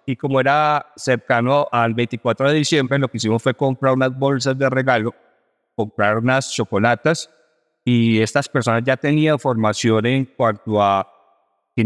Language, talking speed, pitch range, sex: Spanish, 150 wpm, 115-150 Hz, male